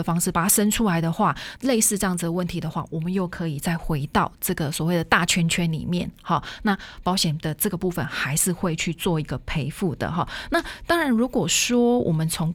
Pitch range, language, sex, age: 165-215 Hz, Chinese, female, 30-49